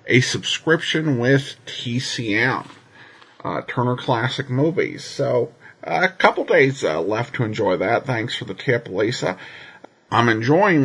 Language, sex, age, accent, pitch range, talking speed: English, male, 50-69, American, 125-155 Hz, 140 wpm